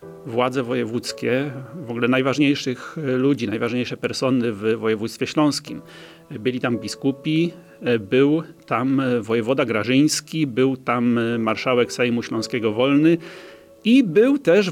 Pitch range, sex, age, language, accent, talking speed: 120-150 Hz, male, 40-59, Polish, native, 110 wpm